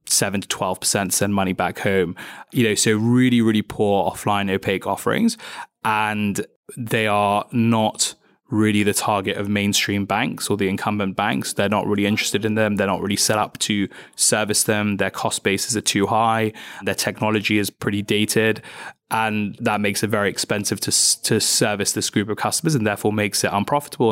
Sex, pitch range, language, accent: male, 100-115 Hz, English, British